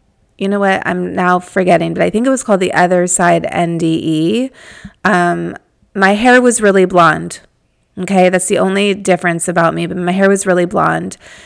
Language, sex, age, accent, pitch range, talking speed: English, female, 30-49, American, 170-190 Hz, 185 wpm